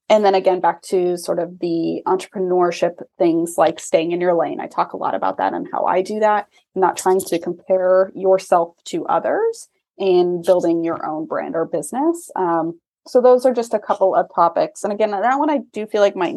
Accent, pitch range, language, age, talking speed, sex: American, 180-245 Hz, English, 20-39, 215 wpm, female